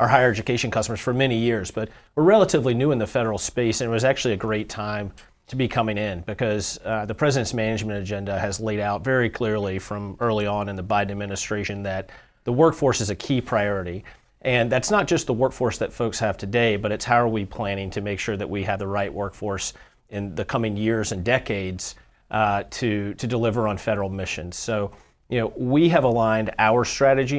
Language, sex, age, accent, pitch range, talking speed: English, male, 40-59, American, 100-120 Hz, 215 wpm